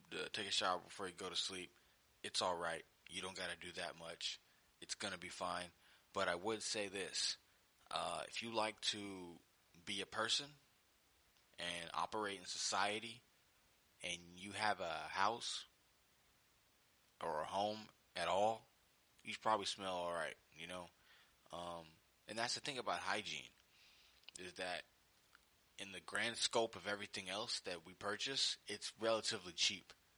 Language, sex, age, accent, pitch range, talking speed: English, male, 20-39, American, 90-105 Hz, 150 wpm